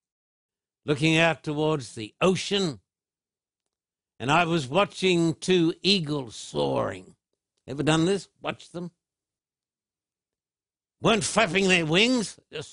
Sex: male